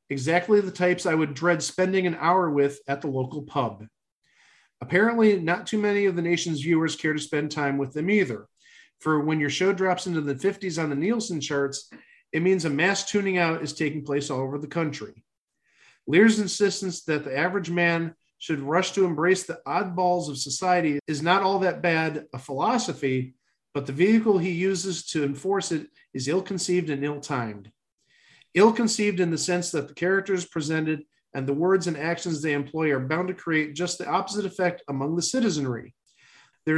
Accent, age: American, 40-59